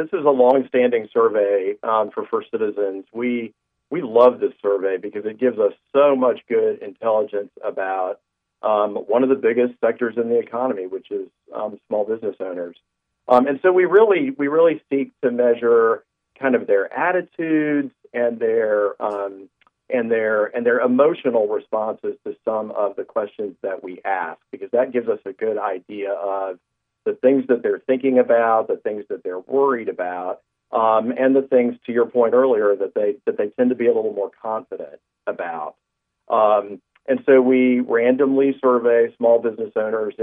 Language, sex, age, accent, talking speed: English, male, 50-69, American, 175 wpm